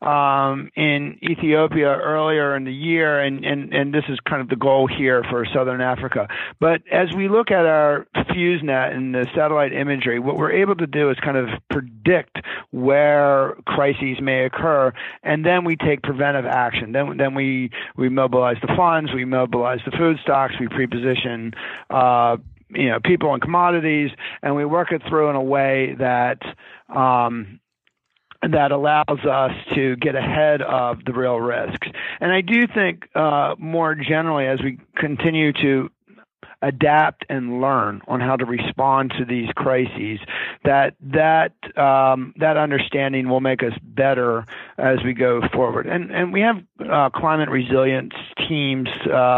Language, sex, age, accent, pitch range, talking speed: English, male, 40-59, American, 130-155 Hz, 160 wpm